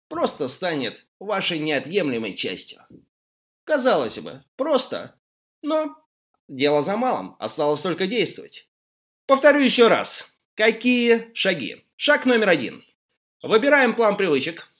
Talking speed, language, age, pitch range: 105 wpm, Russian, 30-49, 170-255 Hz